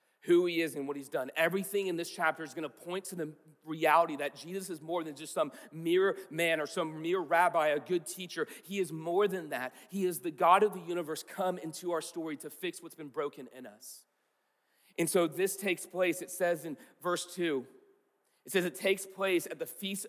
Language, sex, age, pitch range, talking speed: English, male, 40-59, 170-200 Hz, 225 wpm